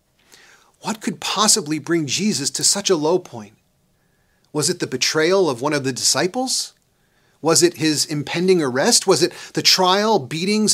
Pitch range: 130-190 Hz